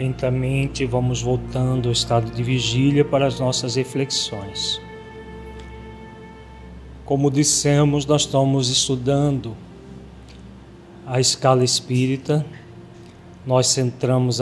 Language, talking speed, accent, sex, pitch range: Portuguese, 85 wpm, Brazilian, male, 125-145 Hz